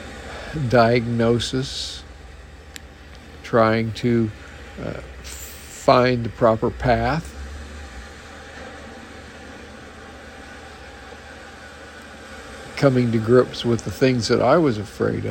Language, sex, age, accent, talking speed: English, male, 60-79, American, 70 wpm